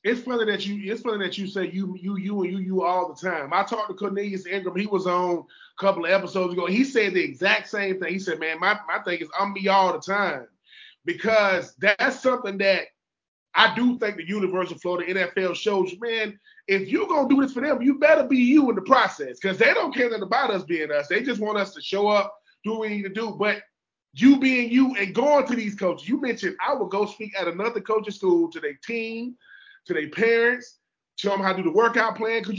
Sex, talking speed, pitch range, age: male, 245 wpm, 195-260 Hz, 20-39